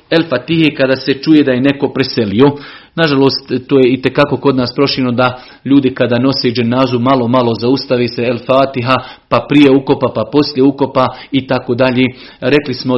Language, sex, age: Croatian, male, 40-59